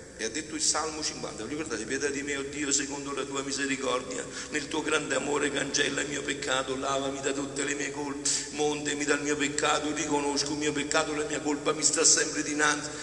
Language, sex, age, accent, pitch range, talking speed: Italian, male, 50-69, native, 130-155 Hz, 210 wpm